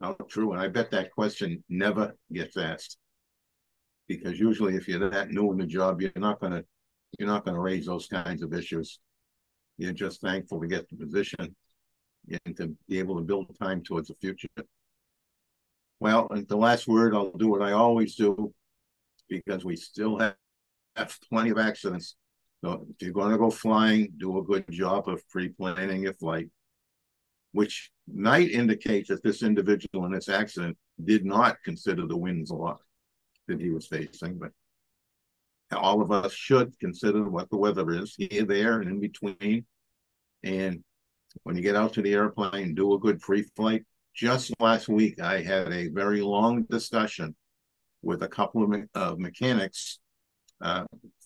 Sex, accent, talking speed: male, American, 170 wpm